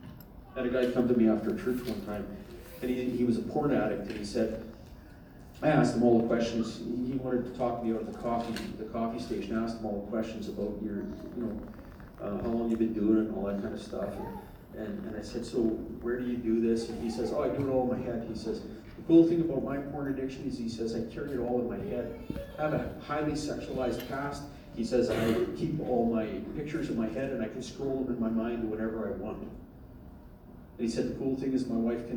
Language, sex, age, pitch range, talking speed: English, male, 40-59, 115-130 Hz, 265 wpm